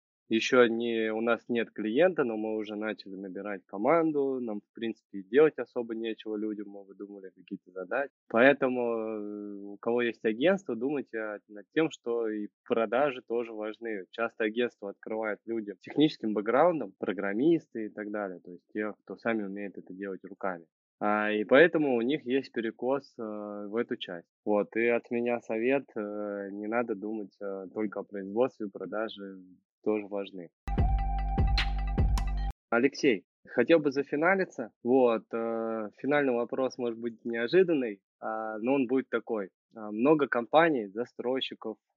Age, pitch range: 20-39, 105-125 Hz